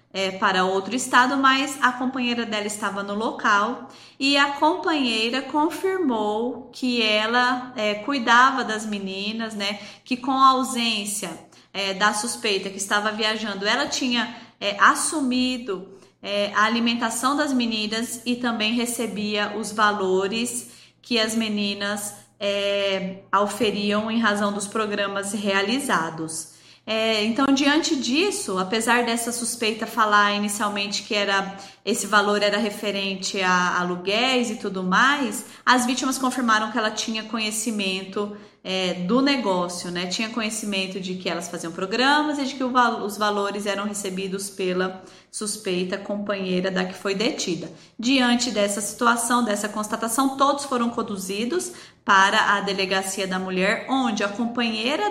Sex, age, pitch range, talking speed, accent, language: female, 20-39, 200-245 Hz, 130 wpm, Brazilian, Portuguese